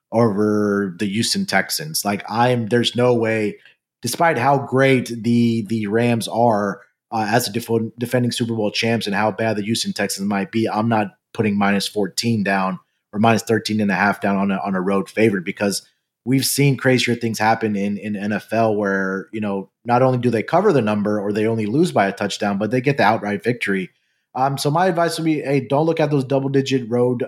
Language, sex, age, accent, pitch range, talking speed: English, male, 30-49, American, 105-135 Hz, 215 wpm